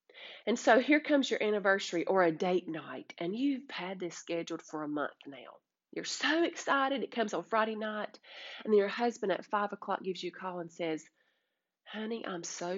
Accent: American